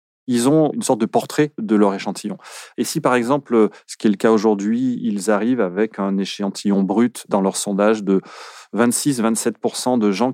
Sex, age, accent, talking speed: male, 30-49, French, 185 wpm